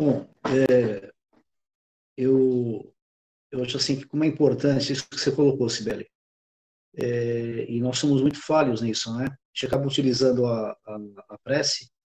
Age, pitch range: 50-69, 125-150 Hz